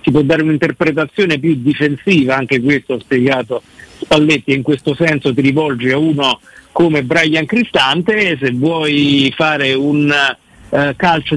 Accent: native